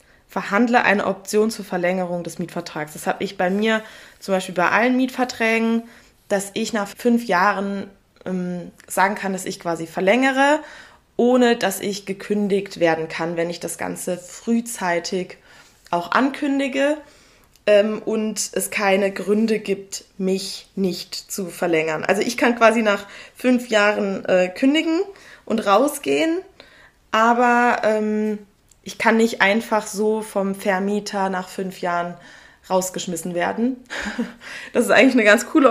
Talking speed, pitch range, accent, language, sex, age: 140 wpm, 185-235 Hz, German, German, female, 20-39